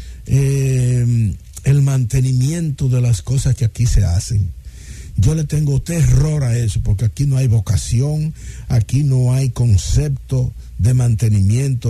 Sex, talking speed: male, 135 wpm